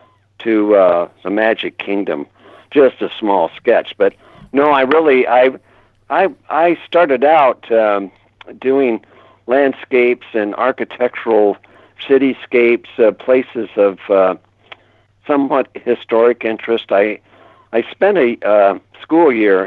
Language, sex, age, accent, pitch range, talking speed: English, male, 60-79, American, 100-120 Hz, 115 wpm